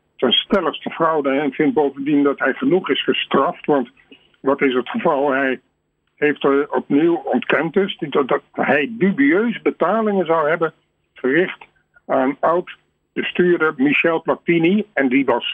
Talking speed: 140 wpm